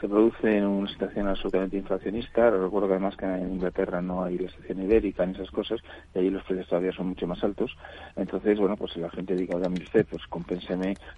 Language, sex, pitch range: Spanish, male, 90-95 Hz